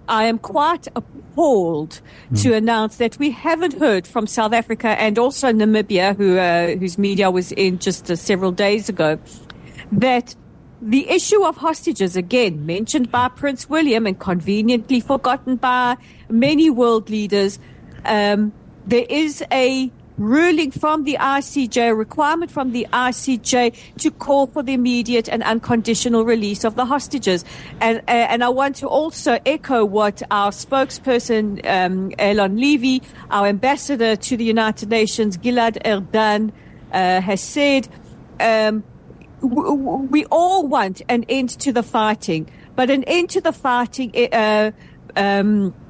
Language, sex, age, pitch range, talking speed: English, female, 50-69, 210-270 Hz, 140 wpm